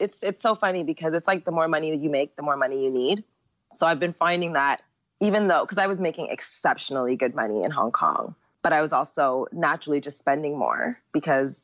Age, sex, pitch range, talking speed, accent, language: 20-39, female, 135-175 Hz, 225 wpm, American, English